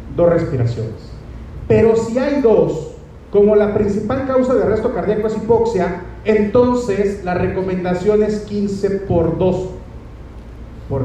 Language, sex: Spanish, male